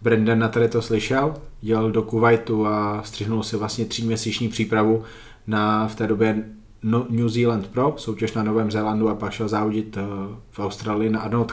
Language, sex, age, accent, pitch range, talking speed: Czech, male, 20-39, native, 105-115 Hz, 170 wpm